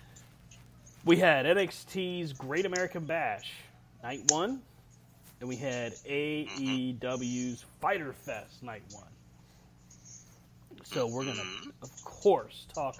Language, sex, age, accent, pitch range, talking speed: English, male, 30-49, American, 115-145 Hz, 105 wpm